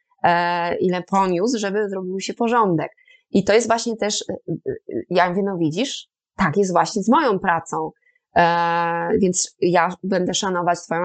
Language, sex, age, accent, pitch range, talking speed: Polish, female, 20-39, native, 180-230 Hz, 150 wpm